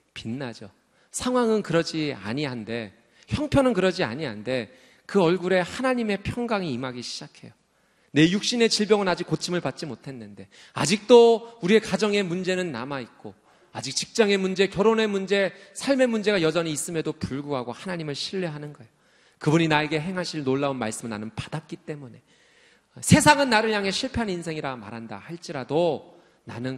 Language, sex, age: Korean, male, 40-59